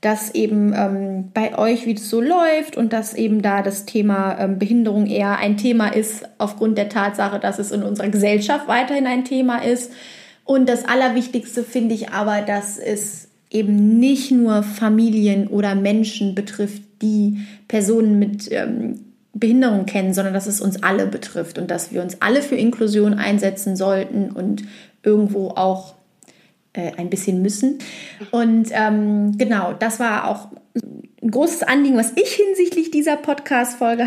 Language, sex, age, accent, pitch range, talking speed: German, female, 20-39, German, 200-235 Hz, 155 wpm